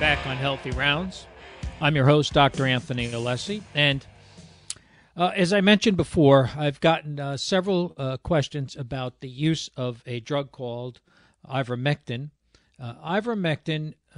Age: 50-69